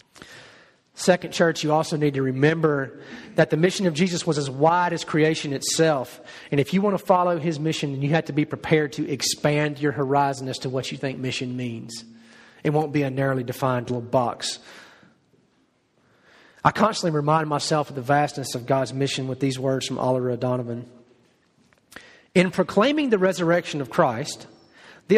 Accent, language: American, English